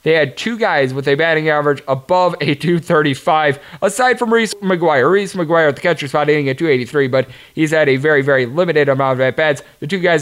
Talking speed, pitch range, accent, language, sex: 215 wpm, 140-170 Hz, American, English, male